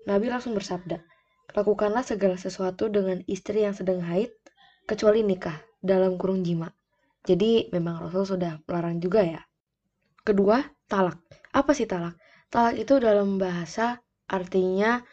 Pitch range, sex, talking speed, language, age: 180-225 Hz, female, 130 wpm, Indonesian, 20-39